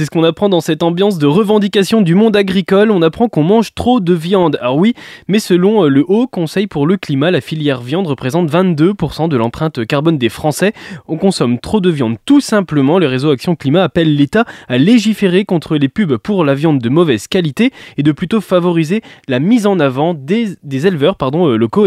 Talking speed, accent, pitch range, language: 205 wpm, French, 135-185 Hz, French